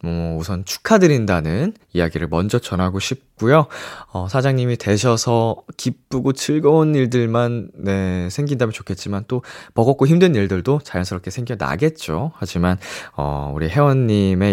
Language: Korean